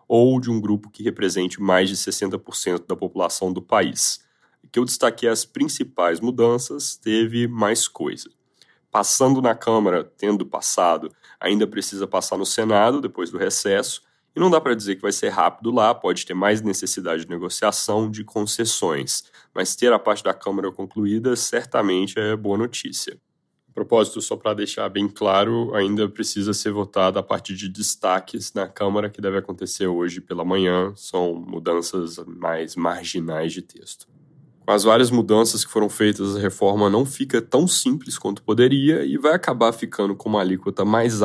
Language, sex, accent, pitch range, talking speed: Portuguese, male, Brazilian, 95-115 Hz, 165 wpm